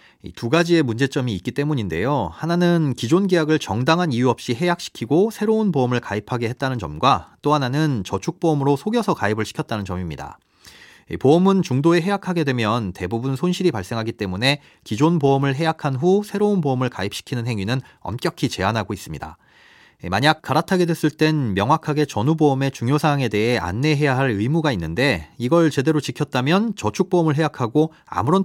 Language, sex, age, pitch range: Korean, male, 30-49, 115-160 Hz